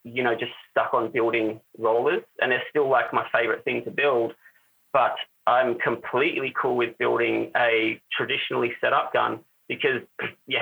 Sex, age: male, 30-49